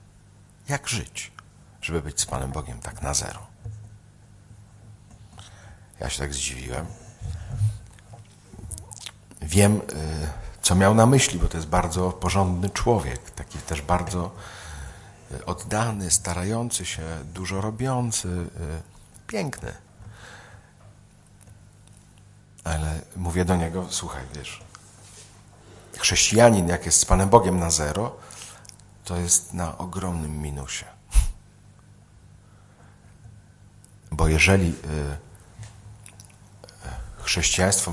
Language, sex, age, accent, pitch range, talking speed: Polish, male, 50-69, native, 85-105 Hz, 90 wpm